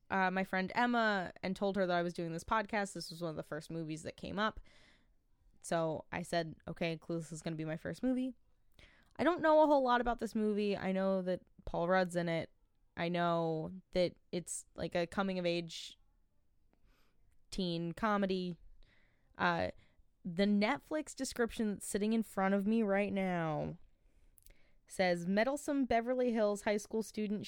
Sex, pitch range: female, 175-225 Hz